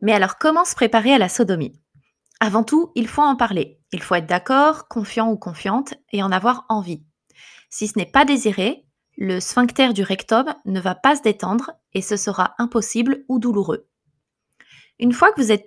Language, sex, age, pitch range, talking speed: French, female, 20-39, 190-245 Hz, 190 wpm